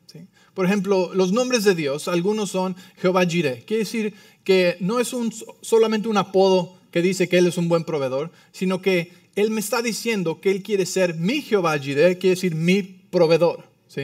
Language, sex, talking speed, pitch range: English, male, 185 wpm, 185-225 Hz